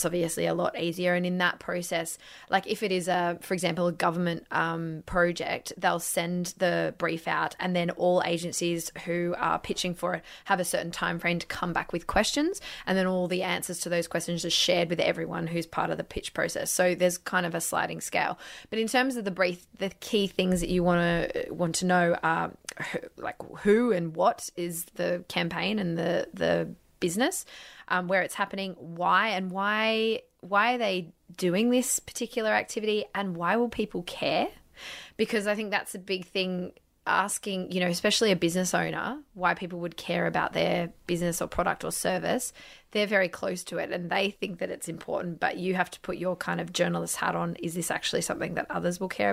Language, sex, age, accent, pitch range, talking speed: English, female, 20-39, Australian, 175-200 Hz, 210 wpm